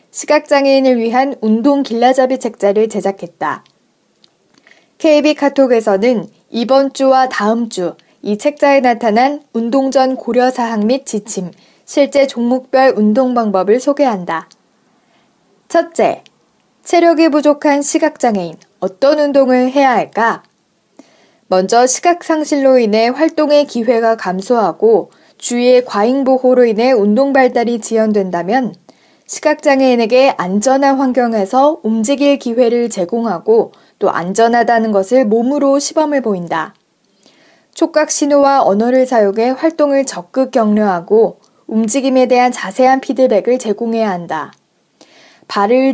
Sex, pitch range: female, 220-275 Hz